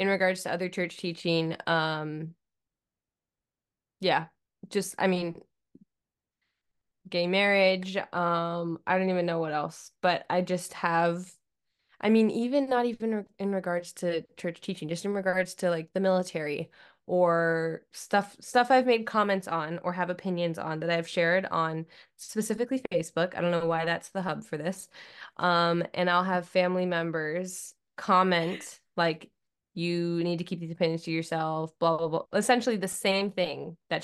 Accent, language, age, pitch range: American, English, 10-29, 170-195 Hz